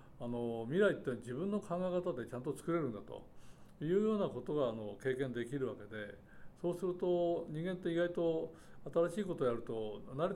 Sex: male